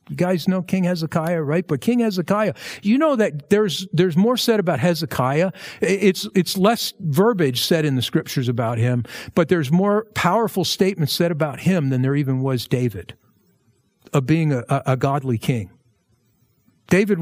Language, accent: English, American